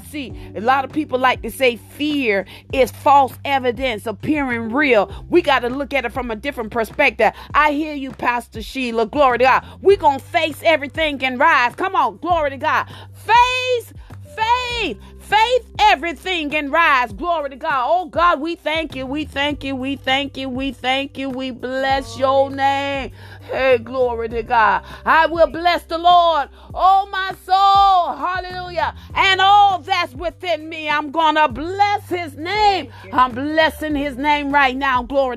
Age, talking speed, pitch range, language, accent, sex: 40-59, 170 wpm, 270-350 Hz, English, American, female